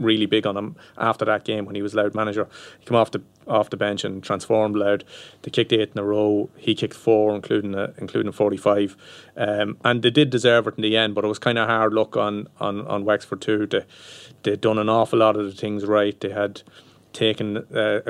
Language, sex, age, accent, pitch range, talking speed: English, male, 30-49, Irish, 100-110 Hz, 235 wpm